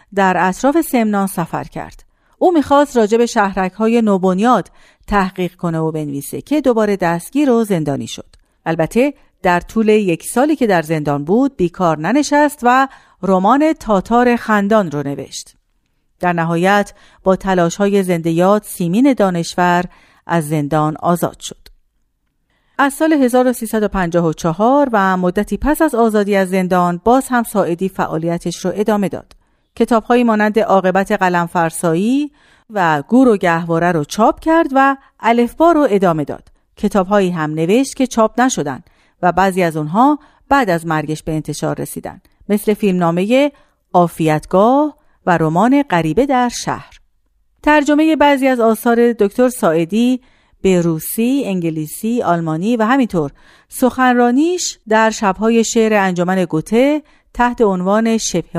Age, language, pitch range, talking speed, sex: 50-69, Persian, 175-245 Hz, 130 wpm, female